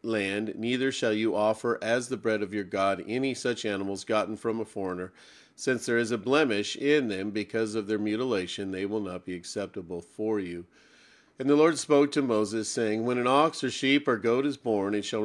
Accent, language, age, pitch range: American, English, 40-59, 105-130 Hz